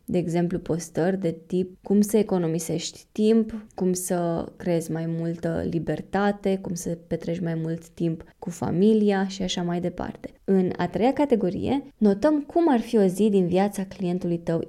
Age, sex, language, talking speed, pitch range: 20-39, female, Romanian, 165 wpm, 170-200 Hz